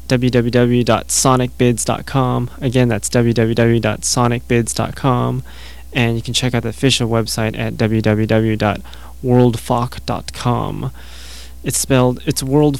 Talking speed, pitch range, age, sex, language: 85 wpm, 105-125 Hz, 20-39, male, English